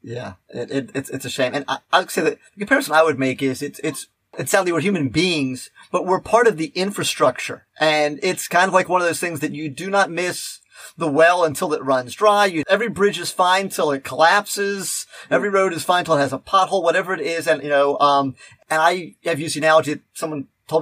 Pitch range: 145-190 Hz